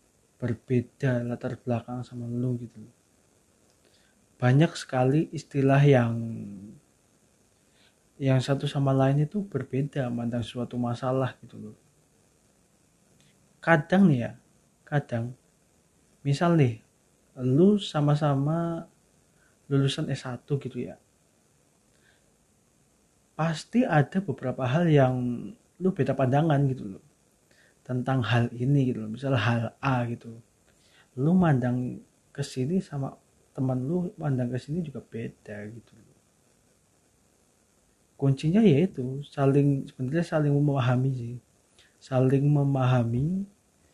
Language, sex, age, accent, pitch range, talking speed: Indonesian, male, 30-49, native, 120-145 Hz, 100 wpm